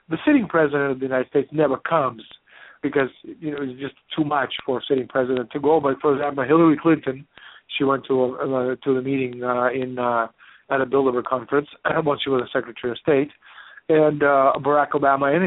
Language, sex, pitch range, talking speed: English, male, 130-145 Hz, 210 wpm